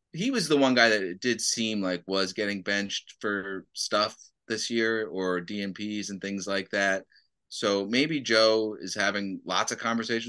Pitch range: 100-120 Hz